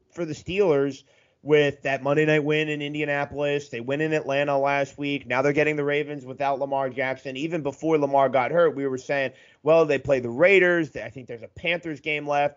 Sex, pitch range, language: male, 130-155 Hz, English